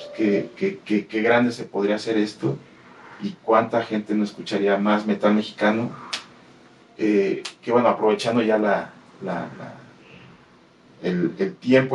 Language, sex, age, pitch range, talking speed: Spanish, male, 40-59, 105-145 Hz, 140 wpm